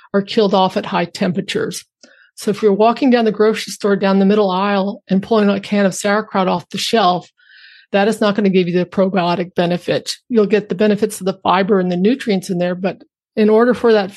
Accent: American